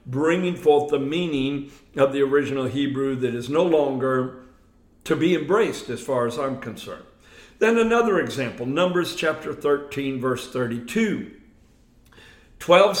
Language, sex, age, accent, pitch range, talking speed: English, male, 60-79, American, 125-165 Hz, 135 wpm